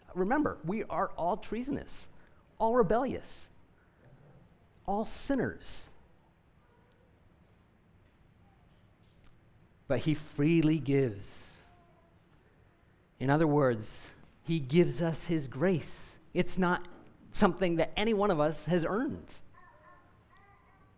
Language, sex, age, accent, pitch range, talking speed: English, male, 40-59, American, 100-155 Hz, 90 wpm